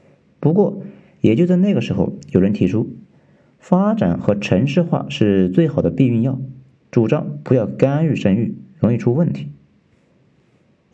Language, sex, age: Chinese, male, 50-69